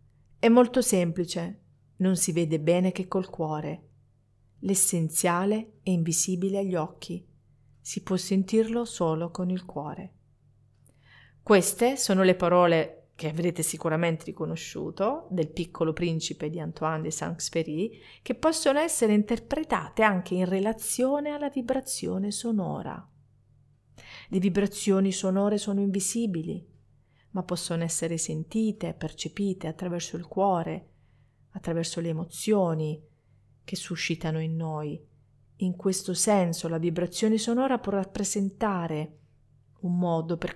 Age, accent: 40-59, native